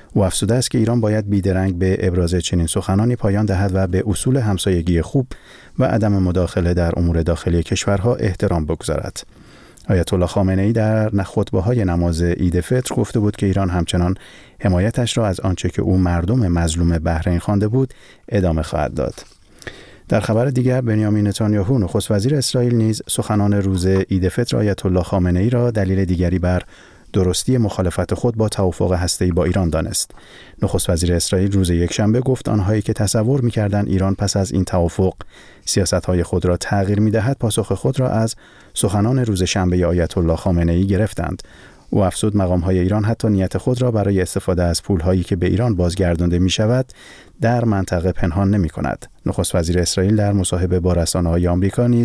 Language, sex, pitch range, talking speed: Persian, male, 90-110 Hz, 160 wpm